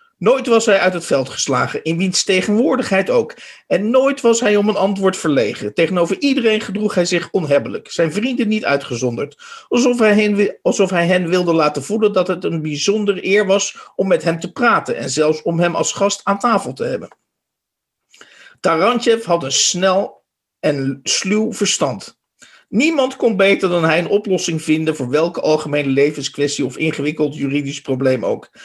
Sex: male